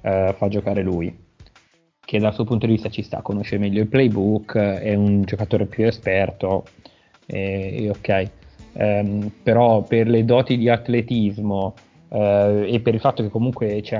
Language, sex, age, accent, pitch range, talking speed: Italian, male, 20-39, native, 105-115 Hz, 170 wpm